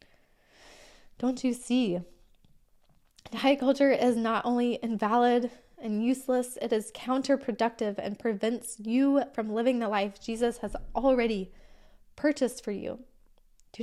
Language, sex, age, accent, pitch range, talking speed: English, female, 10-29, American, 200-235 Hz, 125 wpm